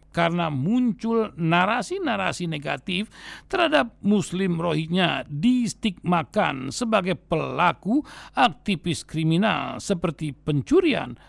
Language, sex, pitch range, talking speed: Indonesian, male, 155-230 Hz, 75 wpm